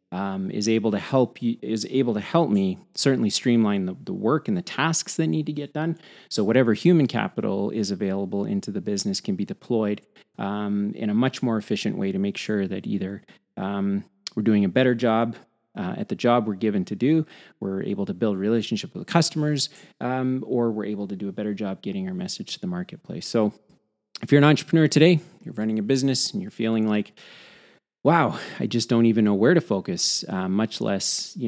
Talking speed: 215 wpm